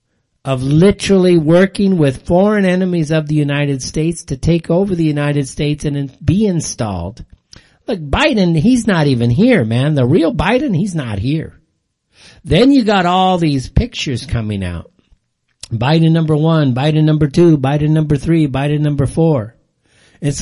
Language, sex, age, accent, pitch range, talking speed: English, male, 50-69, American, 120-165 Hz, 155 wpm